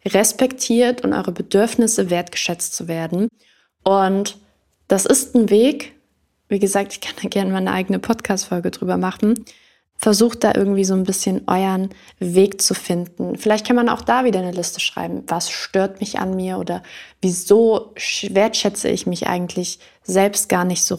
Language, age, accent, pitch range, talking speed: German, 20-39, German, 185-215 Hz, 165 wpm